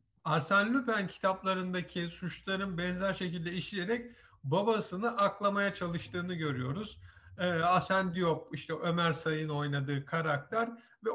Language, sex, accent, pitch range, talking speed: Turkish, male, native, 155-195 Hz, 110 wpm